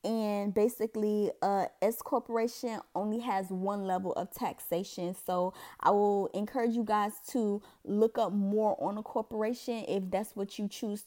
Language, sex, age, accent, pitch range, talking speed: English, female, 20-39, American, 200-240 Hz, 155 wpm